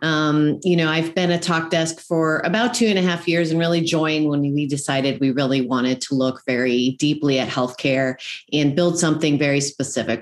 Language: English